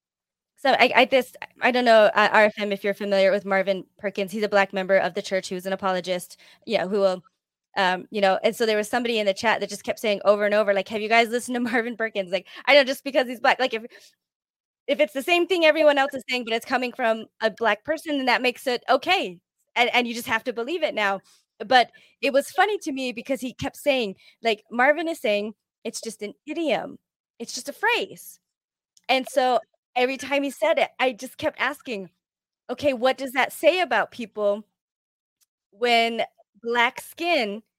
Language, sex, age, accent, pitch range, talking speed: English, female, 20-39, American, 210-270 Hz, 215 wpm